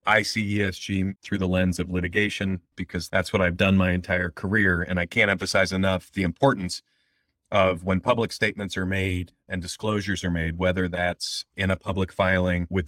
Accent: American